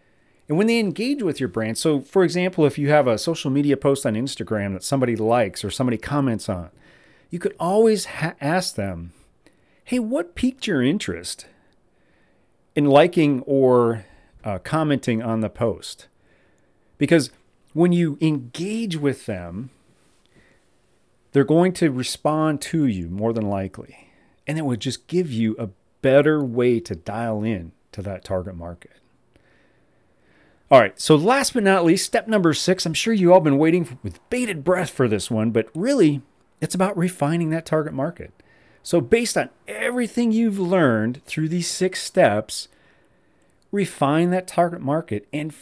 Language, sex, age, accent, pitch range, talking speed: English, male, 40-59, American, 115-180 Hz, 160 wpm